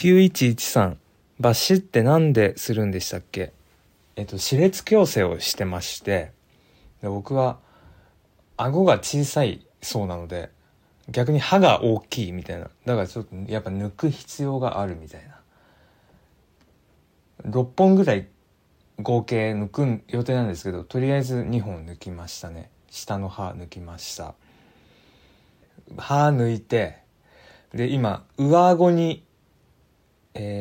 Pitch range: 90-140 Hz